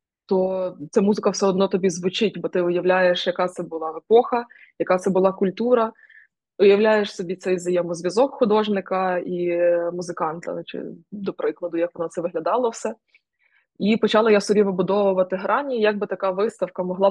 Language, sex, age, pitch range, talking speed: Ukrainian, female, 20-39, 180-210 Hz, 155 wpm